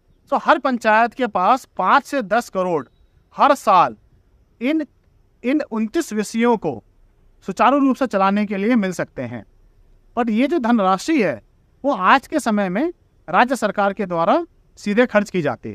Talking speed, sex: 165 wpm, male